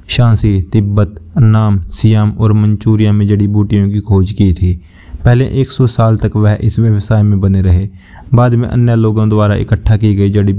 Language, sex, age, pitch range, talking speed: Hindi, male, 20-39, 100-110 Hz, 180 wpm